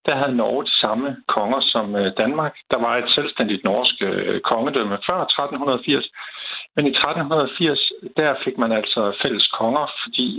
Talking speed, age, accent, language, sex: 150 wpm, 60-79, native, Danish, male